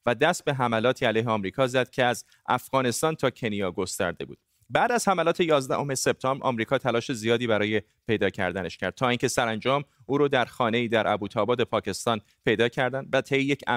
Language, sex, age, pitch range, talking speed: Persian, male, 30-49, 110-140 Hz, 180 wpm